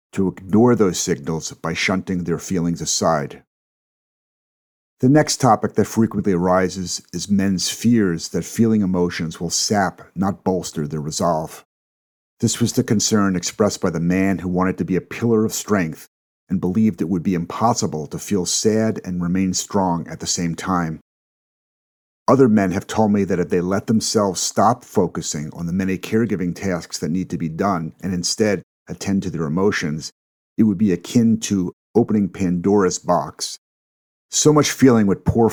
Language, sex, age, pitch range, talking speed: English, male, 50-69, 85-105 Hz, 170 wpm